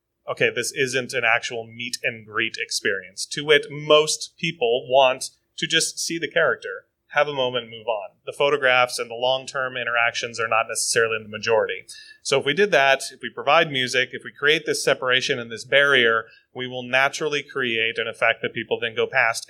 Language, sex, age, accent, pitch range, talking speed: English, male, 30-49, American, 125-180 Hz, 190 wpm